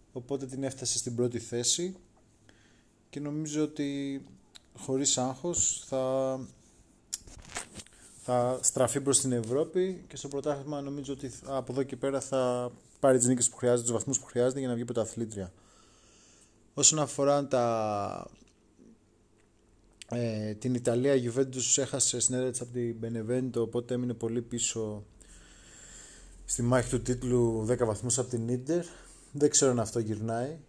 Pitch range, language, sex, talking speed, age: 115-135 Hz, Greek, male, 140 wpm, 20-39